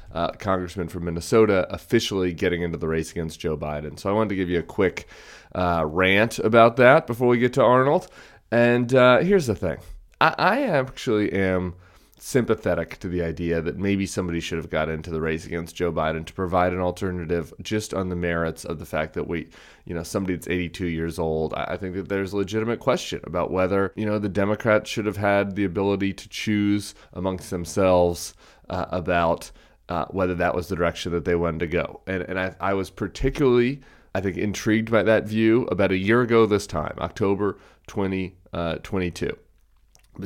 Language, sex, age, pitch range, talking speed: English, male, 30-49, 85-105 Hz, 195 wpm